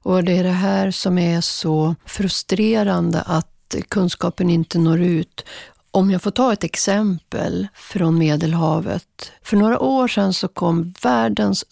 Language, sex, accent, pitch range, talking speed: English, female, Swedish, 160-200 Hz, 150 wpm